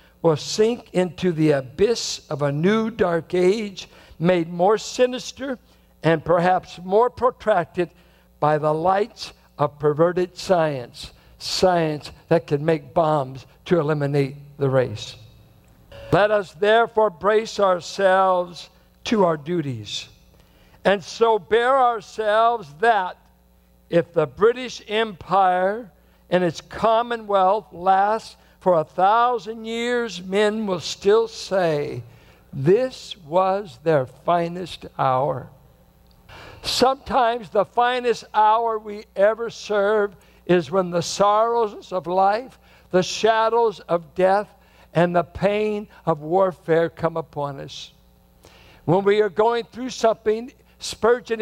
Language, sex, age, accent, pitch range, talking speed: English, male, 60-79, American, 165-220 Hz, 115 wpm